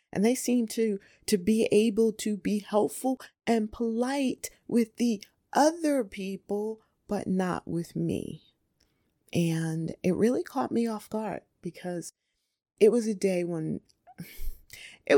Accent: American